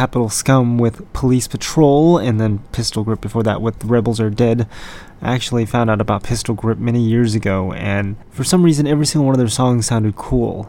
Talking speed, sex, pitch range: 215 wpm, male, 110-125 Hz